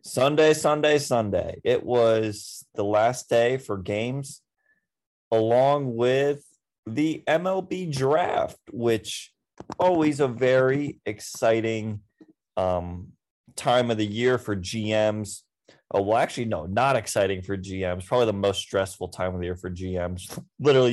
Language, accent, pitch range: English, American, 100-145 Hz